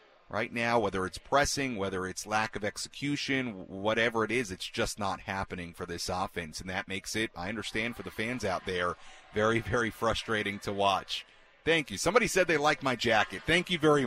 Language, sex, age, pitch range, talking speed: English, male, 40-59, 95-130 Hz, 200 wpm